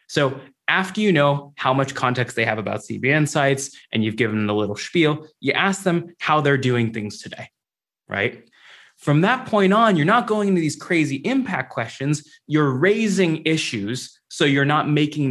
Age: 20-39